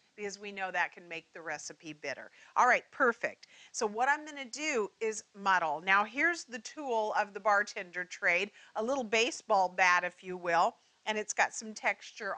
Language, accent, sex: English, American, female